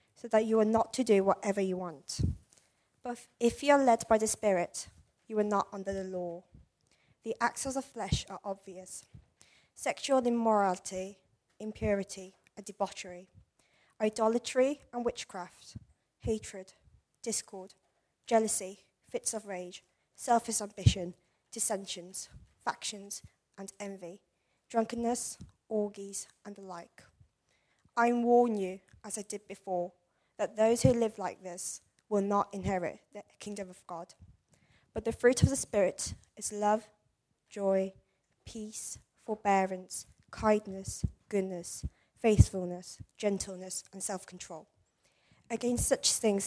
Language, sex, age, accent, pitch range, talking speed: English, female, 20-39, British, 190-225 Hz, 125 wpm